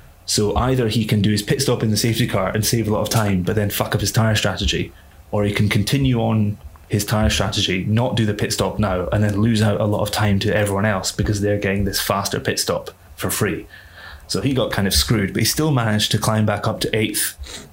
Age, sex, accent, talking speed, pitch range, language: 20-39, male, British, 255 wpm, 100-115 Hz, English